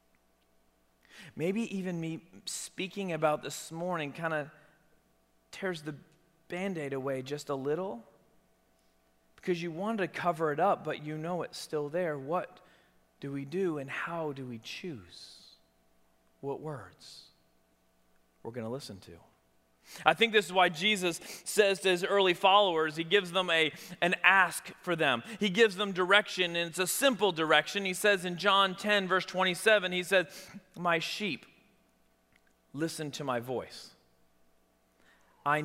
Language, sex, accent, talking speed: English, male, American, 150 wpm